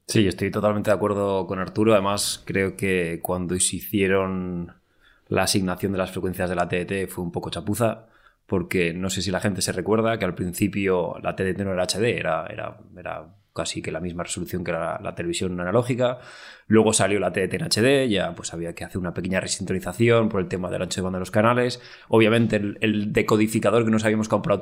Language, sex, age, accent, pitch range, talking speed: Spanish, male, 20-39, Spanish, 95-110 Hz, 210 wpm